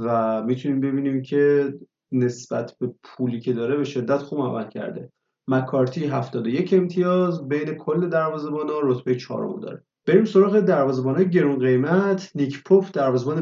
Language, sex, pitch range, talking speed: Persian, male, 125-170 Hz, 140 wpm